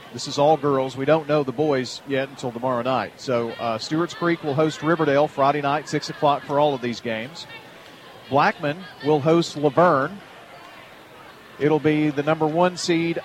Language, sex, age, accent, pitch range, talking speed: English, male, 40-59, American, 135-160 Hz, 180 wpm